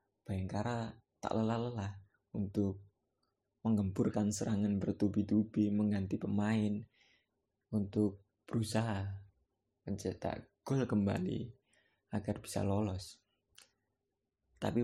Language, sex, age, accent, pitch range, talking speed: Indonesian, male, 20-39, native, 100-110 Hz, 75 wpm